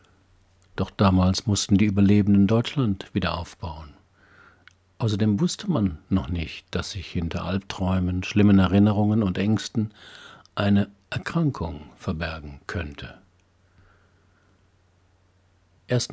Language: German